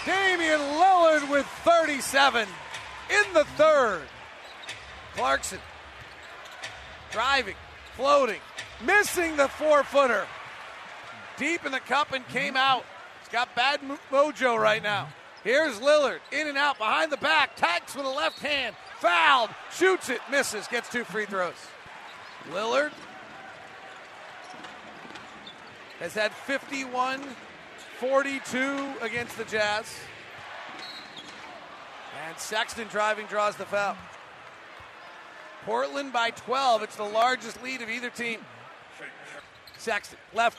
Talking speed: 110 wpm